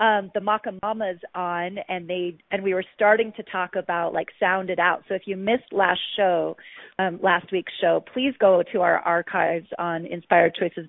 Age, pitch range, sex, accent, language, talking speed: 40-59, 180-215 Hz, female, American, English, 195 wpm